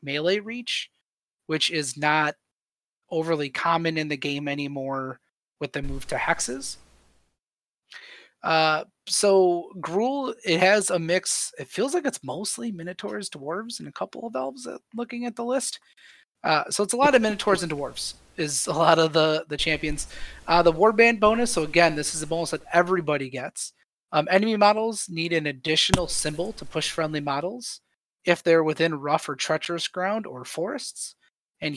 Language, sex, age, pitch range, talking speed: English, male, 30-49, 150-185 Hz, 170 wpm